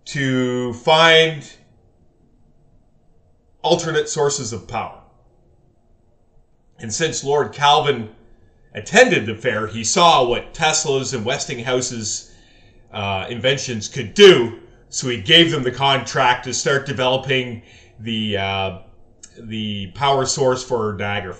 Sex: male